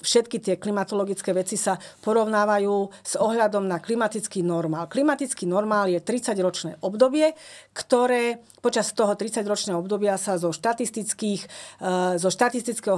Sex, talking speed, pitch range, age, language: female, 115 wpm, 185-235 Hz, 40-59, Slovak